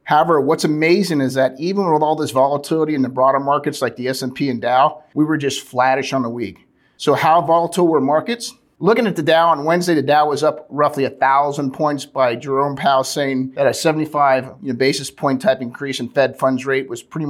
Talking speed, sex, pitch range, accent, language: 210 wpm, male, 130-155 Hz, American, English